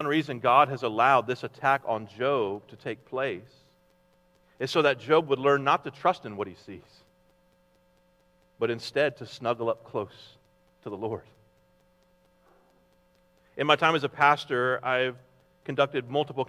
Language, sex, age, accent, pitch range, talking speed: English, male, 40-59, American, 130-180 Hz, 155 wpm